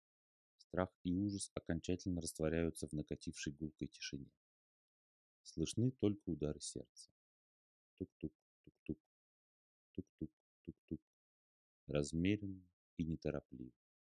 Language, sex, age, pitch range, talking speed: Russian, male, 30-49, 70-90 Hz, 85 wpm